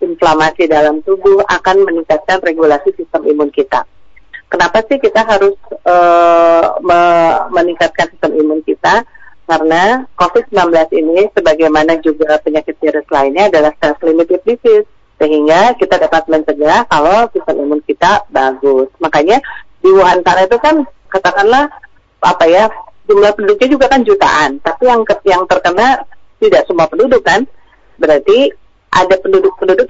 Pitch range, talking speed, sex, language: 160-210 Hz, 125 wpm, female, Indonesian